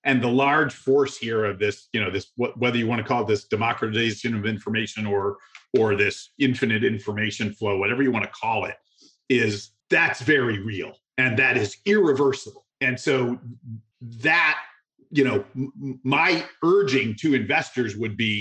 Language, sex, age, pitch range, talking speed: English, male, 40-59, 120-155 Hz, 175 wpm